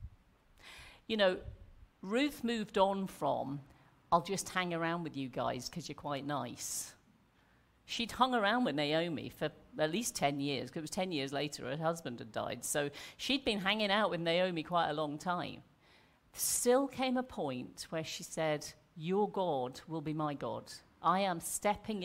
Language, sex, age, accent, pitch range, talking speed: English, female, 50-69, British, 145-190 Hz, 175 wpm